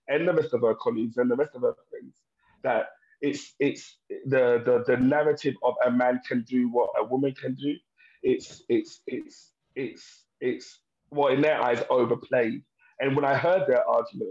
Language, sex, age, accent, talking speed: English, male, 30-49, British, 195 wpm